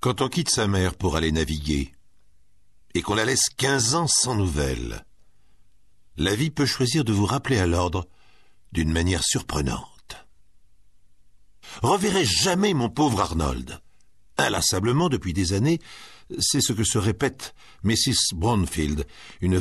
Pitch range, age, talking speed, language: 90-125 Hz, 60-79, 140 wpm, French